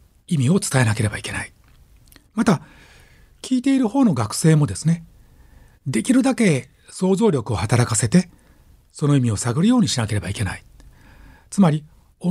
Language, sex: Japanese, male